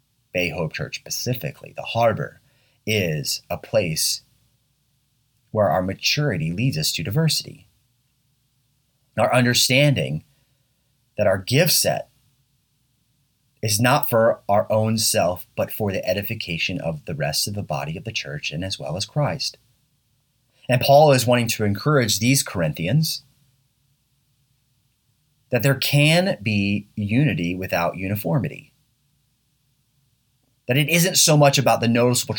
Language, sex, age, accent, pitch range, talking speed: English, male, 30-49, American, 115-140 Hz, 130 wpm